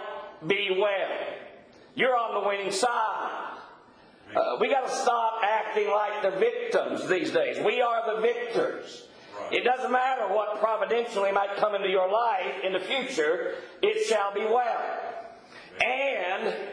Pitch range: 210-320 Hz